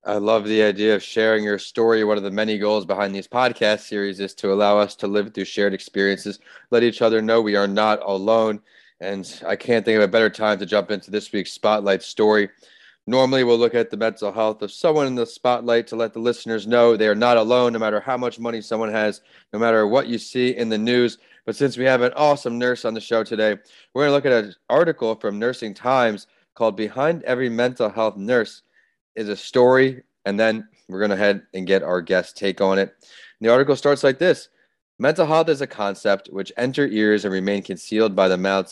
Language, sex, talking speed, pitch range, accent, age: English, male, 225 wpm, 100-120 Hz, American, 30-49